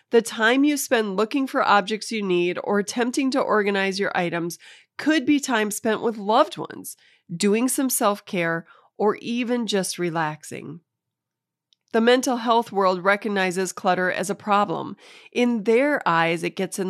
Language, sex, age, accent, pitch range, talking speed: English, female, 30-49, American, 175-230 Hz, 155 wpm